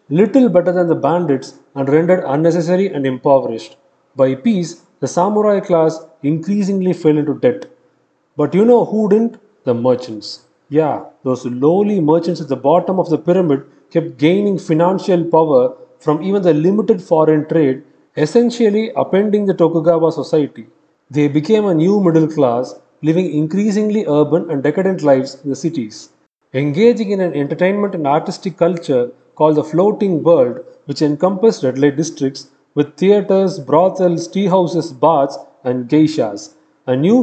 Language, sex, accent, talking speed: Tamil, male, native, 150 wpm